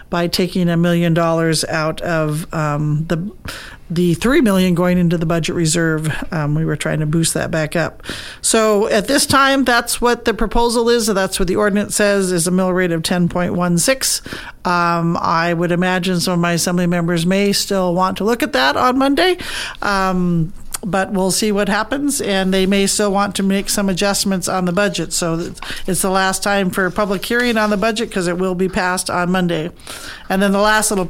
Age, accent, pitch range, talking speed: 50-69, American, 165-205 Hz, 205 wpm